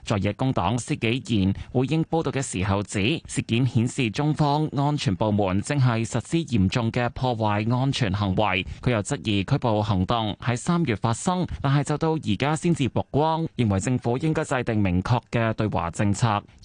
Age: 20-39